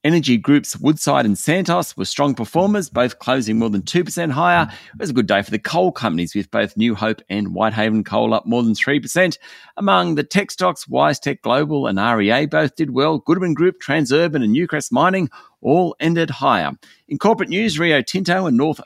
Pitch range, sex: 110-170 Hz, male